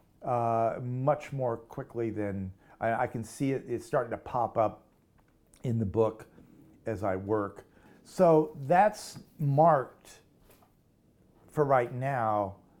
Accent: American